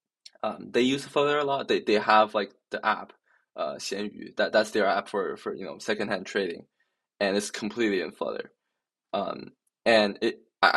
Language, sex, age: English, male, 20-39